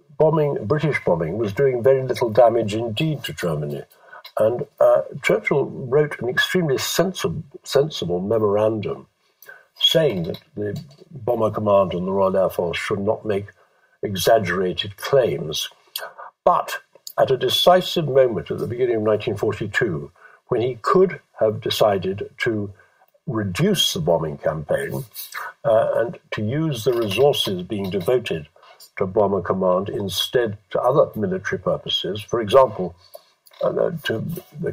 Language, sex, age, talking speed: English, male, 60-79, 130 wpm